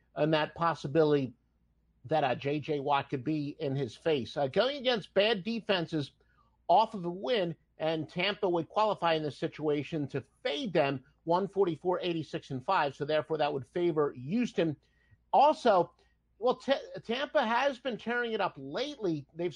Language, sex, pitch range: English, male, 155-220 Hz